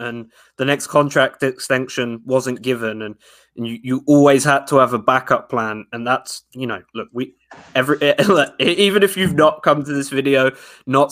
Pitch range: 125-155 Hz